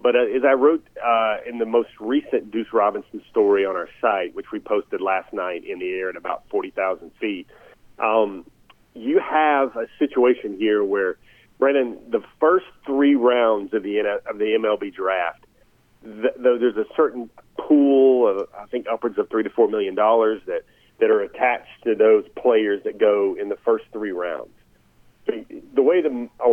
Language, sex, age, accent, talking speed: English, male, 40-59, American, 175 wpm